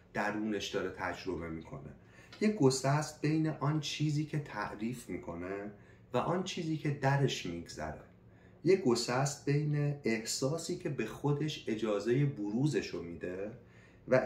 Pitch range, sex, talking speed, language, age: 105-145 Hz, male, 120 wpm, Persian, 30-49